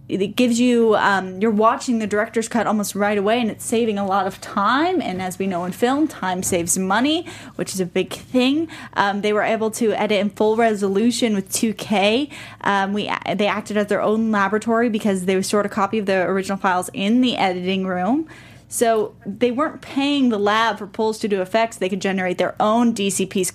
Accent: American